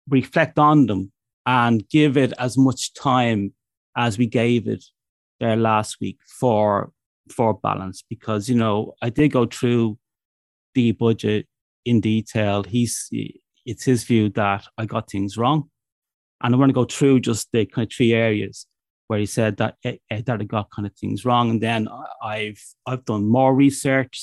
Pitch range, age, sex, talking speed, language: 105-125 Hz, 30-49, male, 170 wpm, English